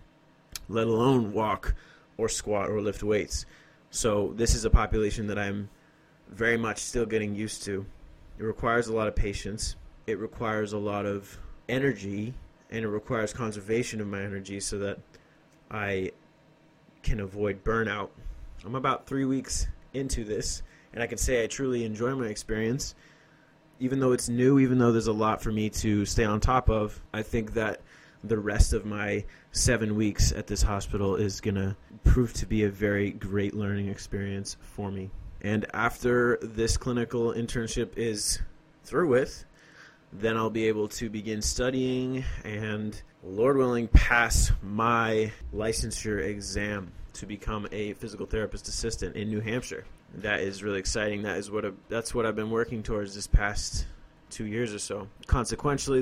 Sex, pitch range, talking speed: male, 100-115 Hz, 165 wpm